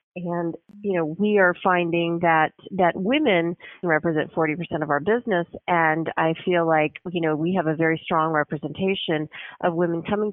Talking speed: 170 wpm